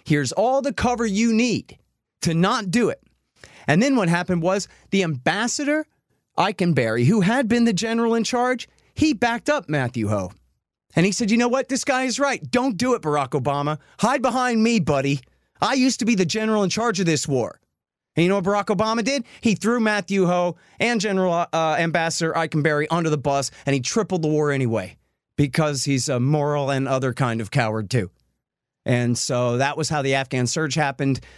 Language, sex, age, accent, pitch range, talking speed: English, male, 30-49, American, 115-185 Hz, 200 wpm